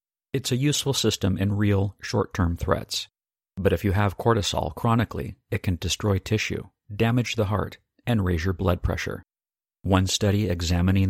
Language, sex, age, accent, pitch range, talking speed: English, male, 50-69, American, 90-110 Hz, 155 wpm